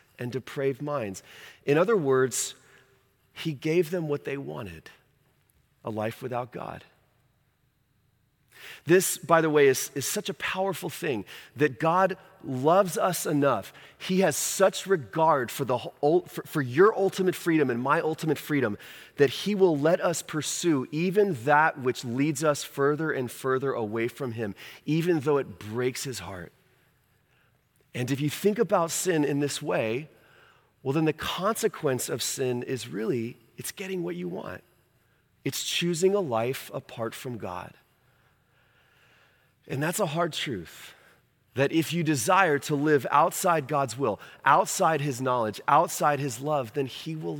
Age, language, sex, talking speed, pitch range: 30-49, English, male, 150 wpm, 130-165 Hz